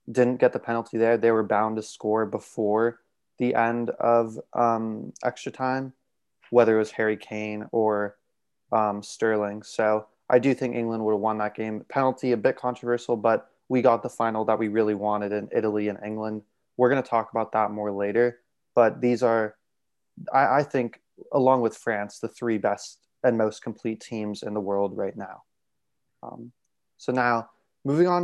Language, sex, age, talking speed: English, male, 20-39, 185 wpm